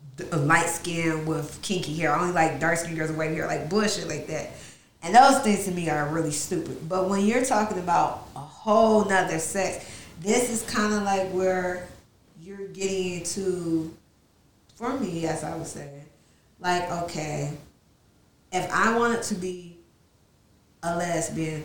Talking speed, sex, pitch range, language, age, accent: 165 wpm, female, 160-210 Hz, English, 20-39, American